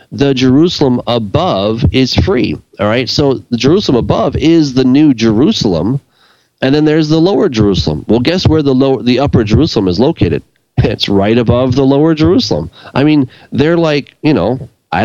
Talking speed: 175 wpm